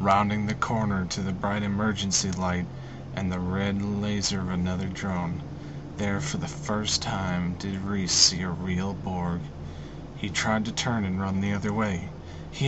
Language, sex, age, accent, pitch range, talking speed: English, male, 30-49, American, 95-110 Hz, 170 wpm